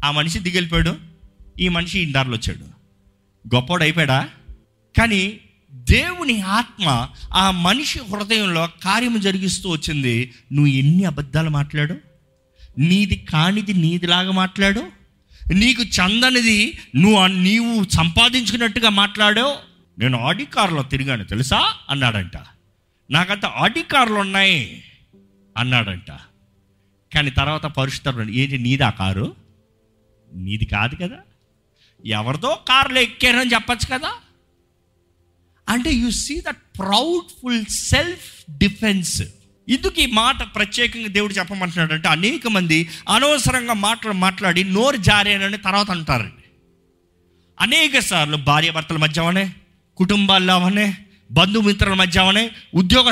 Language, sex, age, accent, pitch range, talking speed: Telugu, male, 50-69, native, 130-210 Hz, 100 wpm